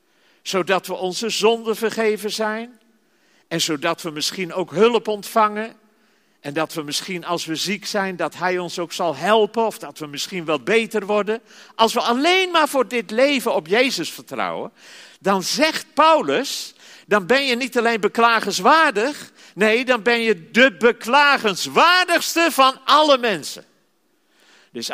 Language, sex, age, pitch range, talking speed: Dutch, male, 50-69, 155-230 Hz, 150 wpm